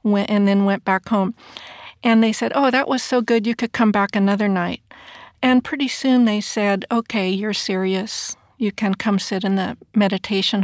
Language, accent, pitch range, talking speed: English, American, 200-230 Hz, 195 wpm